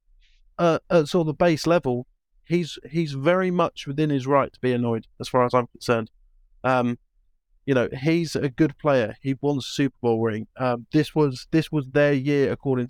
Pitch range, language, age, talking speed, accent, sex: 125-155 Hz, English, 30-49, 205 wpm, British, male